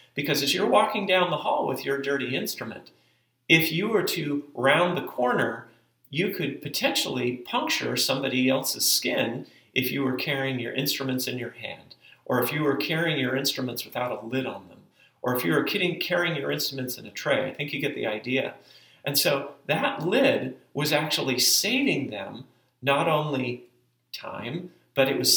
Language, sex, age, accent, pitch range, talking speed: English, male, 40-59, American, 125-150 Hz, 180 wpm